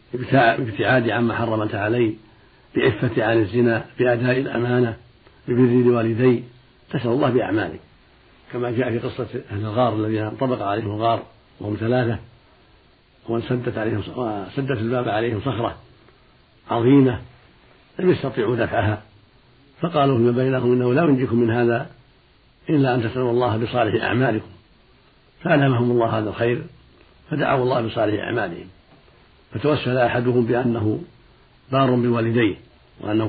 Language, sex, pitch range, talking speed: Arabic, male, 115-125 Hz, 115 wpm